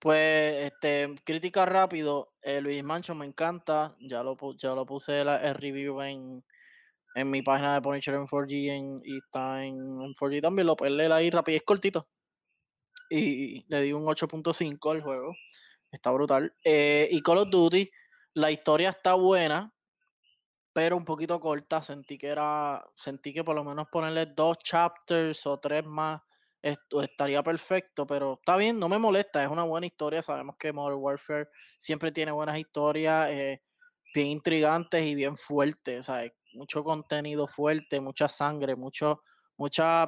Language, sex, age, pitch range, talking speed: Spanish, male, 20-39, 140-165 Hz, 165 wpm